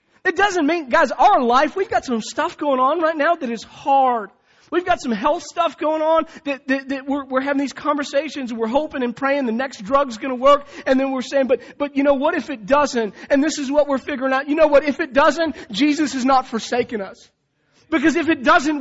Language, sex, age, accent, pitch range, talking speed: English, male, 40-59, American, 230-290 Hz, 245 wpm